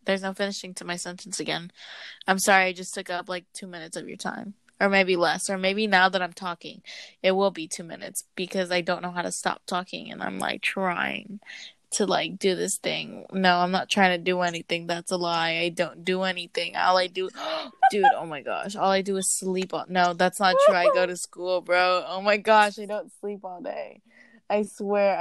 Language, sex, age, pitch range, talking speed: English, female, 20-39, 180-205 Hz, 225 wpm